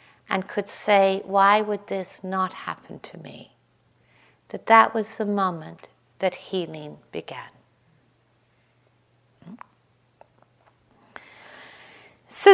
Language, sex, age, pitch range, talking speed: English, female, 60-79, 195-260 Hz, 90 wpm